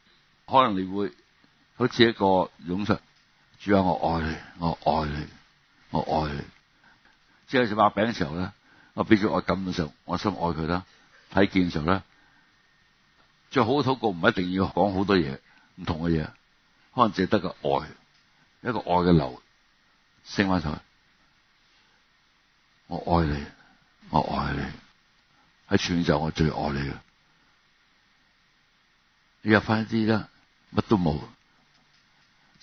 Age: 60-79